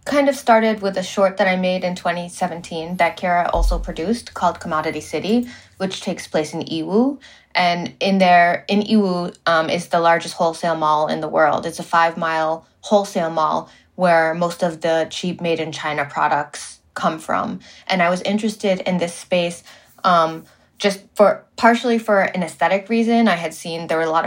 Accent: American